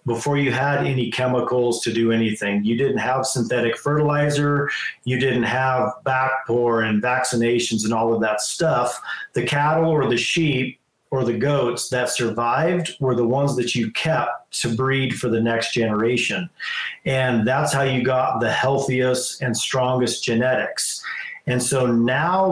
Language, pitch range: English, 120-140 Hz